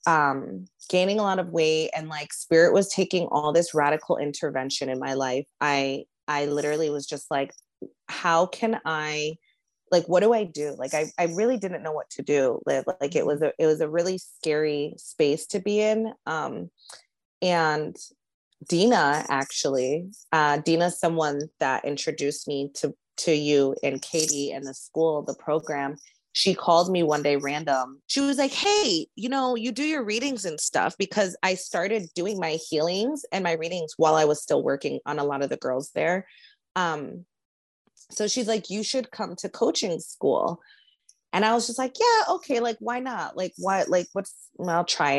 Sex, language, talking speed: female, English, 185 wpm